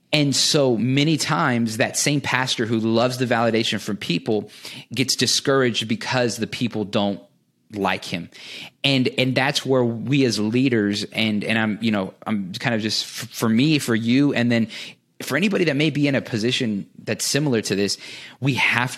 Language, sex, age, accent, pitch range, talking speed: English, male, 30-49, American, 105-130 Hz, 185 wpm